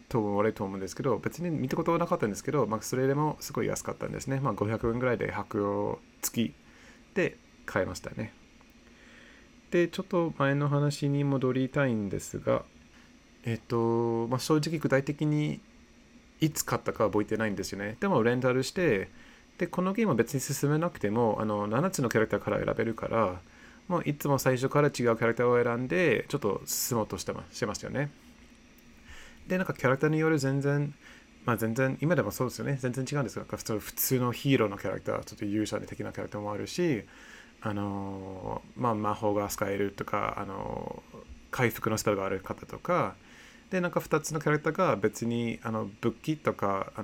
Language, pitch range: Japanese, 105-145 Hz